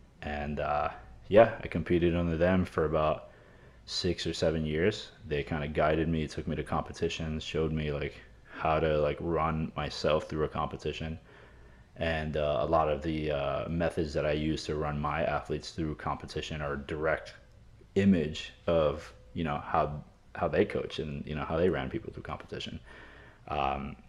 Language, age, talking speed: English, 30-49, 175 wpm